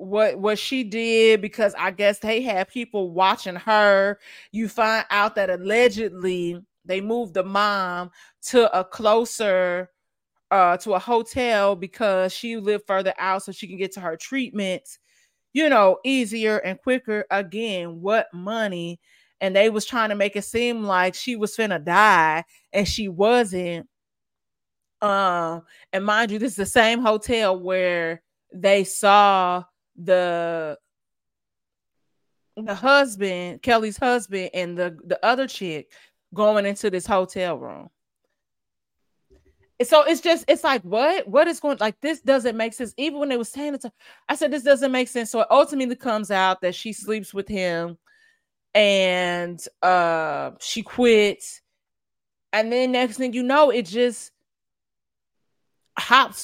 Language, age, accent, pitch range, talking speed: English, 30-49, American, 185-235 Hz, 150 wpm